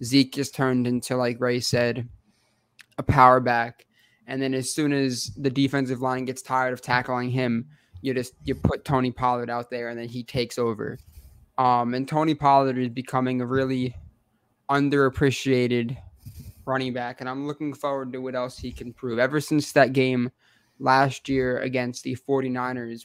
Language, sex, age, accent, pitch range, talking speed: English, male, 20-39, American, 120-140 Hz, 170 wpm